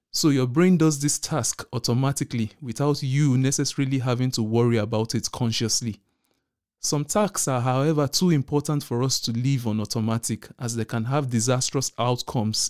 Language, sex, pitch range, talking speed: English, male, 115-145 Hz, 160 wpm